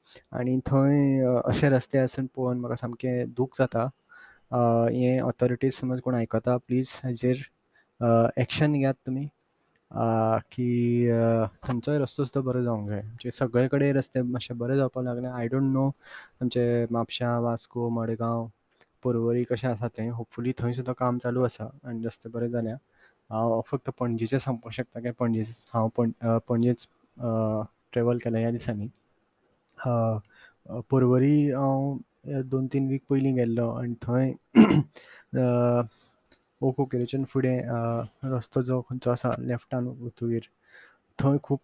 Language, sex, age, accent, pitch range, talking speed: Marathi, male, 20-39, native, 120-130 Hz, 110 wpm